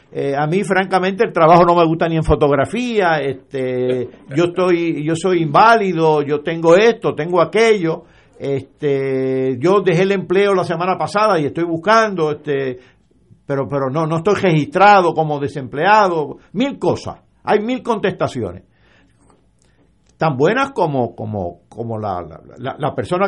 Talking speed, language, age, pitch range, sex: 145 wpm, Spanish, 60-79, 135-190 Hz, male